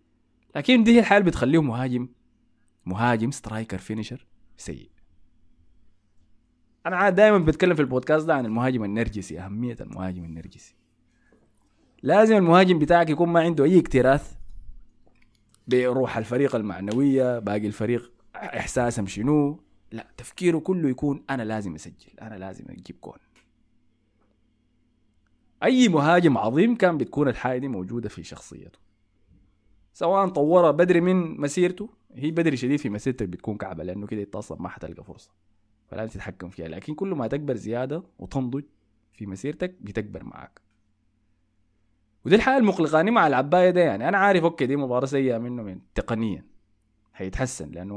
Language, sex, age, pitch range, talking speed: Arabic, male, 20-39, 100-145 Hz, 135 wpm